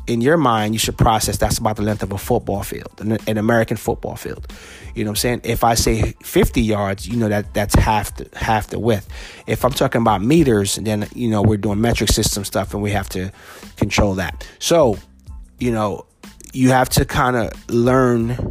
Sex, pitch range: male, 100-115 Hz